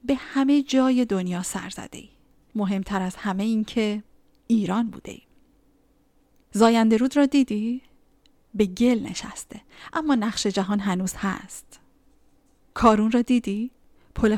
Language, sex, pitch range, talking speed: Persian, female, 195-230 Hz, 120 wpm